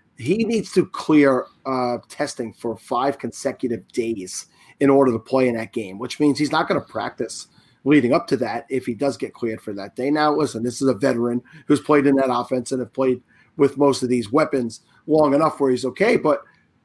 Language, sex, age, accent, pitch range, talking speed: English, male, 30-49, American, 125-145 Hz, 215 wpm